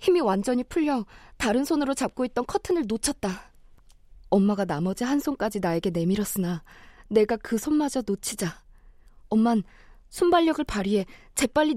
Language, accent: Korean, native